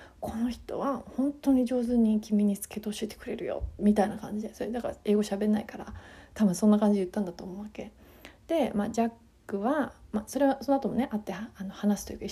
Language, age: Japanese, 30-49